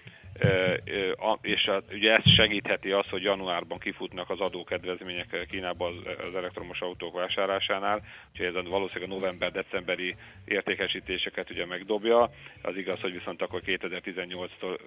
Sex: male